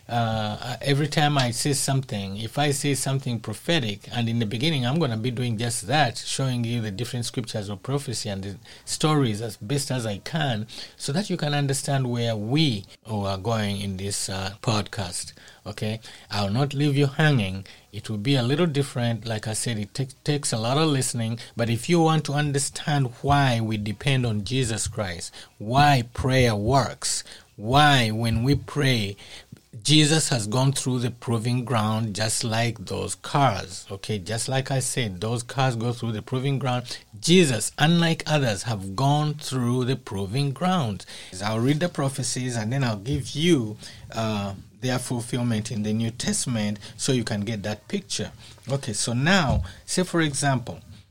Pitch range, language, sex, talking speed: 110-140 Hz, English, male, 175 wpm